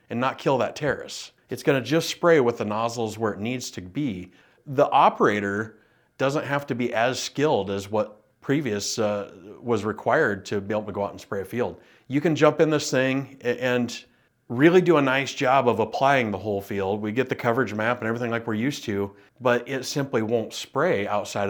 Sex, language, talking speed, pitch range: male, English, 210 wpm, 100-130 Hz